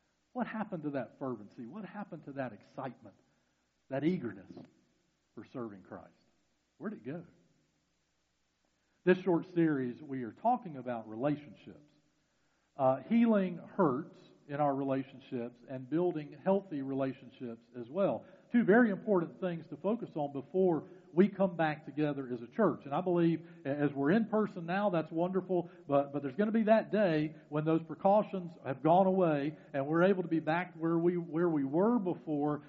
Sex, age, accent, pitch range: male, 50-69, American, 145-195 Hz